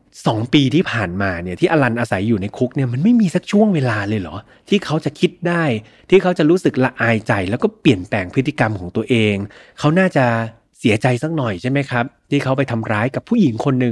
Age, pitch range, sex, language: 30-49, 110-140 Hz, male, Thai